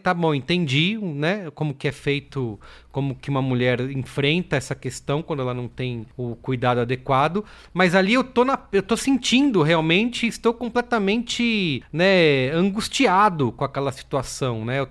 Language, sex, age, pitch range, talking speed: English, male, 30-49, 135-180 Hz, 160 wpm